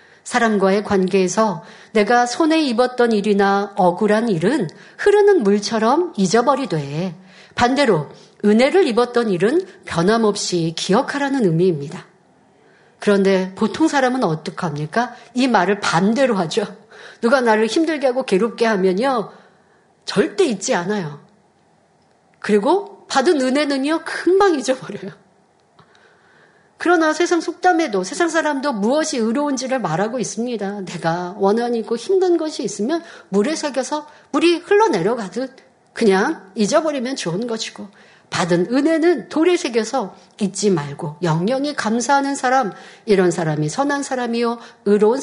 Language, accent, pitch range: Korean, native, 195-280 Hz